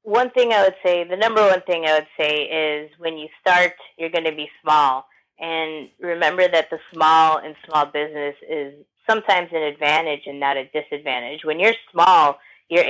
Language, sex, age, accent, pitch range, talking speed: English, female, 20-39, American, 150-170 Hz, 190 wpm